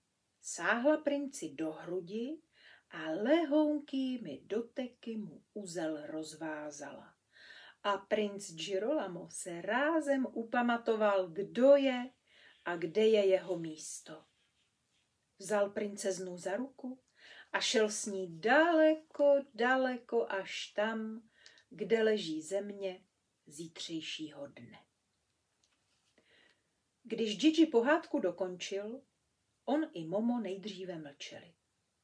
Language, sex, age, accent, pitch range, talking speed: Czech, female, 40-59, native, 190-270 Hz, 90 wpm